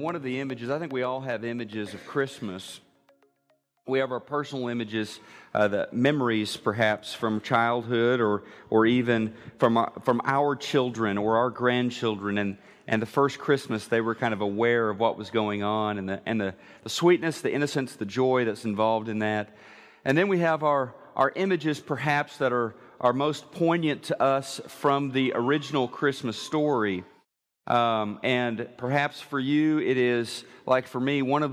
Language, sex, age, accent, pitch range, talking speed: English, male, 40-59, American, 110-140 Hz, 180 wpm